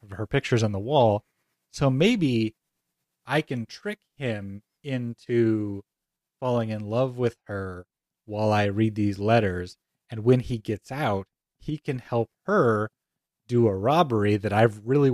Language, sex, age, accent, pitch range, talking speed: English, male, 30-49, American, 105-135 Hz, 145 wpm